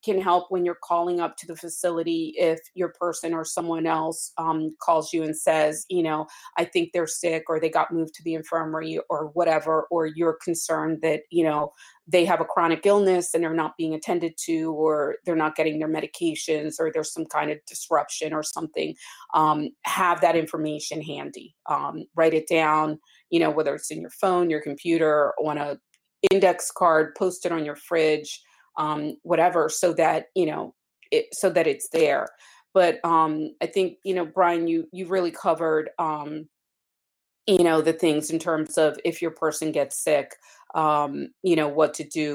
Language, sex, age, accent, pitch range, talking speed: English, female, 30-49, American, 155-180 Hz, 190 wpm